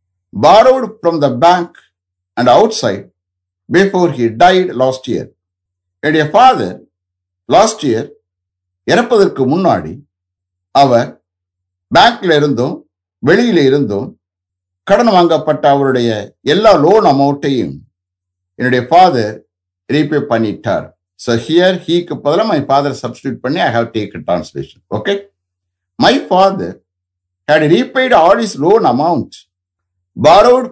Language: English